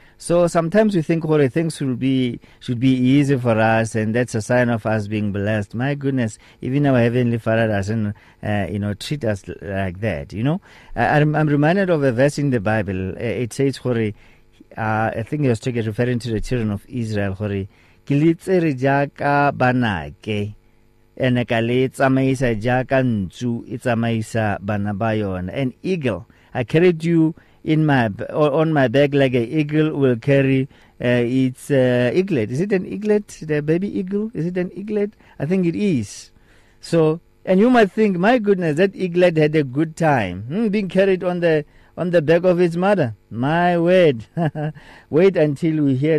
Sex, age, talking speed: male, 50-69, 170 wpm